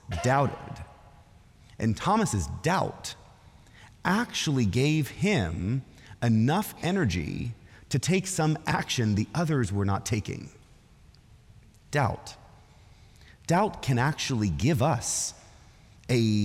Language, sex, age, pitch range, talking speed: English, male, 30-49, 105-155 Hz, 90 wpm